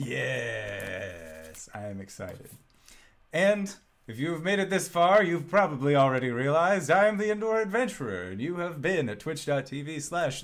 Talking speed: 160 wpm